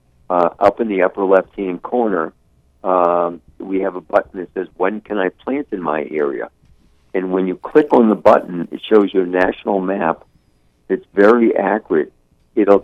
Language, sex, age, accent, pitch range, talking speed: English, male, 50-69, American, 75-100 Hz, 180 wpm